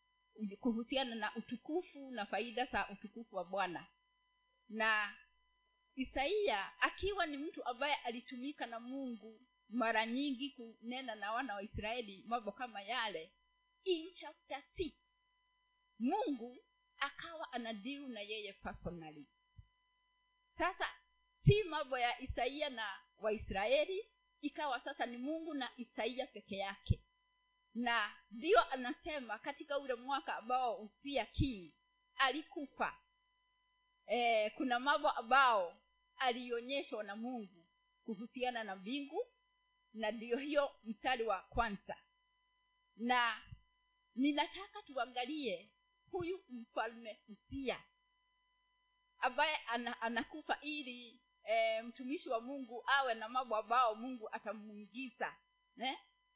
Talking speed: 105 wpm